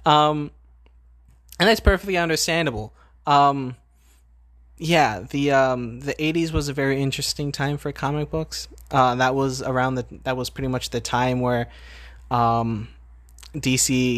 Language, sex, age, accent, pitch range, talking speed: English, male, 20-39, American, 110-130 Hz, 140 wpm